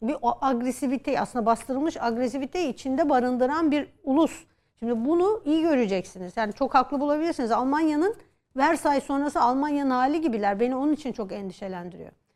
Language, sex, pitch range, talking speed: Turkish, female, 240-300 Hz, 140 wpm